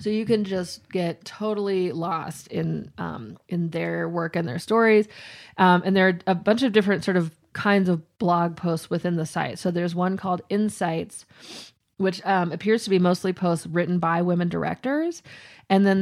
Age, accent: 20-39, American